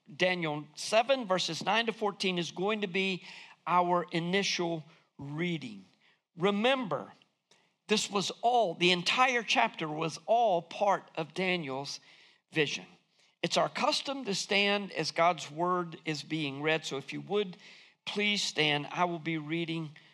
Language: English